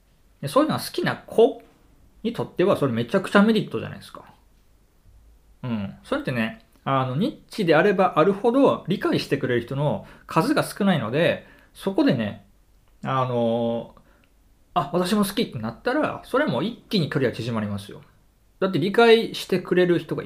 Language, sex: Japanese, male